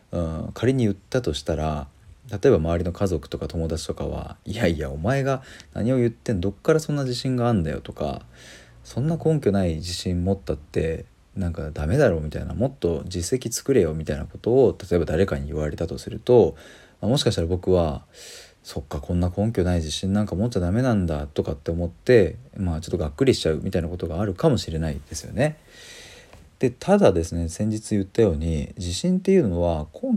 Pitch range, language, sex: 85-120 Hz, Japanese, male